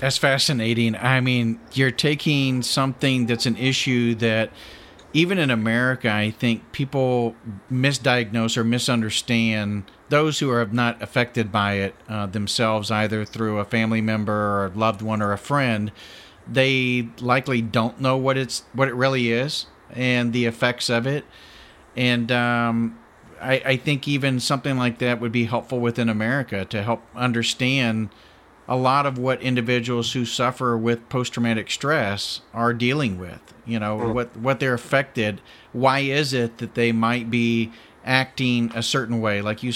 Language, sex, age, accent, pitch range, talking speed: English, male, 40-59, American, 110-130 Hz, 160 wpm